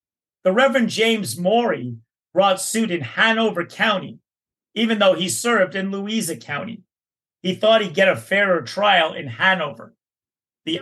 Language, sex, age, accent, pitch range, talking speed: English, male, 40-59, American, 165-210 Hz, 145 wpm